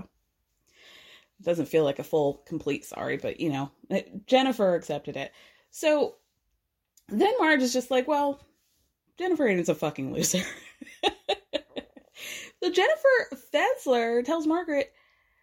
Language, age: English, 20-39